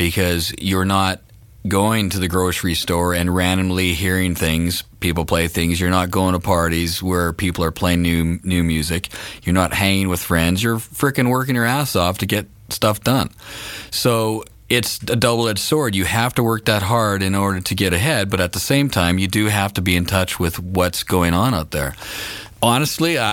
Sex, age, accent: male, 40-59, American